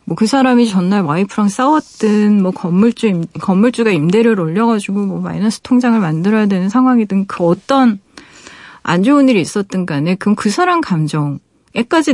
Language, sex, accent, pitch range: Korean, female, native, 175-230 Hz